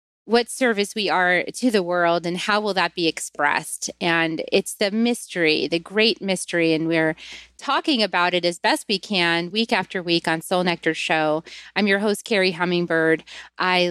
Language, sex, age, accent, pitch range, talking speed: English, female, 30-49, American, 170-210 Hz, 180 wpm